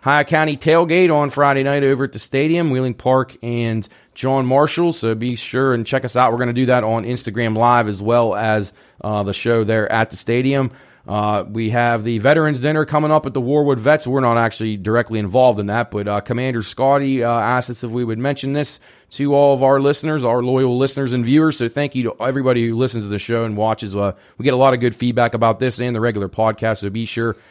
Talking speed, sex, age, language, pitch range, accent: 240 wpm, male, 30-49, English, 115-135 Hz, American